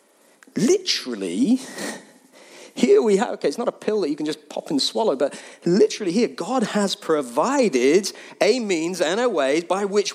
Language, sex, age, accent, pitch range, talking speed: English, male, 30-49, British, 135-210 Hz, 170 wpm